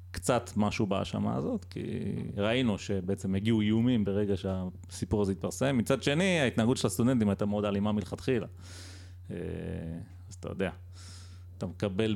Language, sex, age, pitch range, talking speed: Hebrew, male, 30-49, 90-130 Hz, 135 wpm